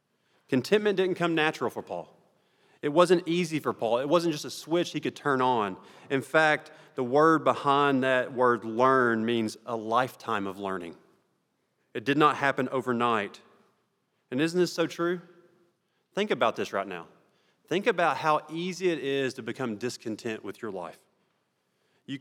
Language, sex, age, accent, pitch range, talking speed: English, male, 30-49, American, 125-155 Hz, 165 wpm